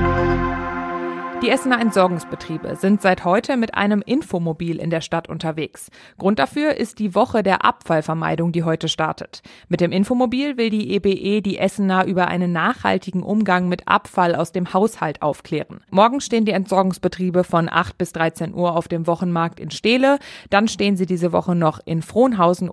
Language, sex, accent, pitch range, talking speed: German, female, German, 170-205 Hz, 165 wpm